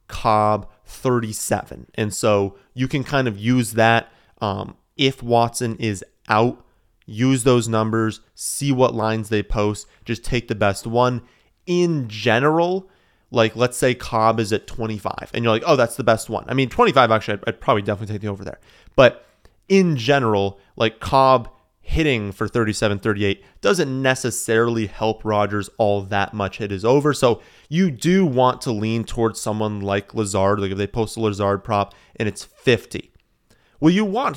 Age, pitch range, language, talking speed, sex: 30-49, 105-125 Hz, English, 175 wpm, male